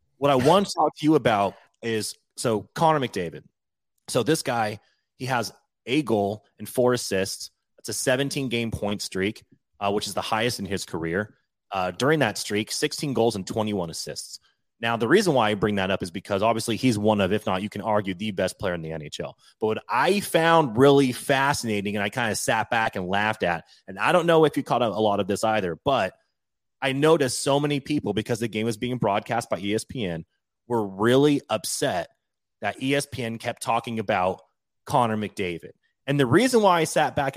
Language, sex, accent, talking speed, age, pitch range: English, male, American, 205 wpm, 30-49, 105-145 Hz